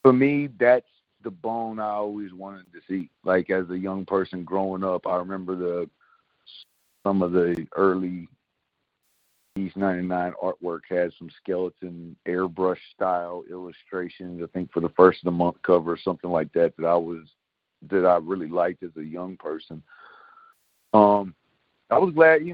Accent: American